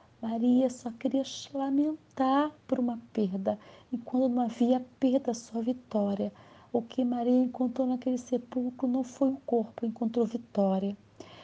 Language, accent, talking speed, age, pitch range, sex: Portuguese, Brazilian, 135 wpm, 40-59, 235-265 Hz, female